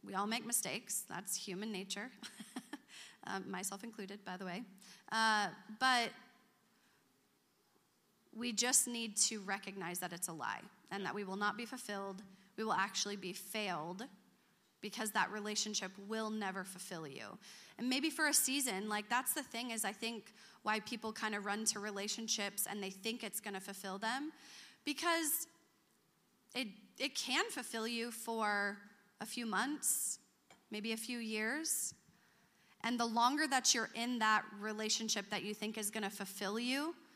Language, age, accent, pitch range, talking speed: English, 30-49, American, 195-235 Hz, 160 wpm